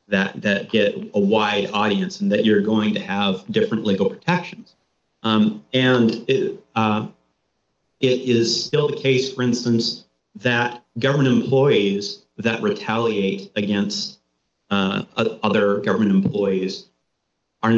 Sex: male